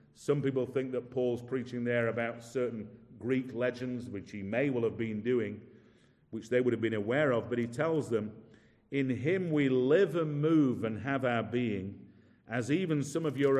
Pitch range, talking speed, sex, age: 115-145 Hz, 195 wpm, male, 50-69